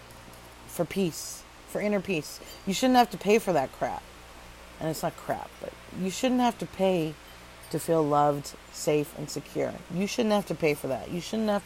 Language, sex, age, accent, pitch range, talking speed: English, female, 40-59, American, 140-185 Hz, 200 wpm